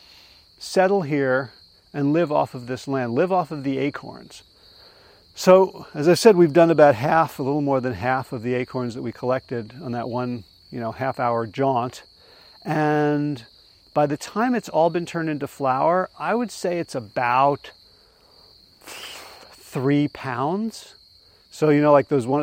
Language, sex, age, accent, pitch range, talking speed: English, male, 40-59, American, 125-165 Hz, 170 wpm